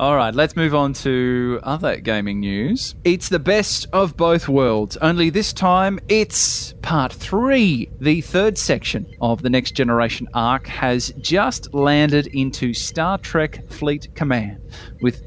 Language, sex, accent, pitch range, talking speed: English, male, Australian, 125-185 Hz, 150 wpm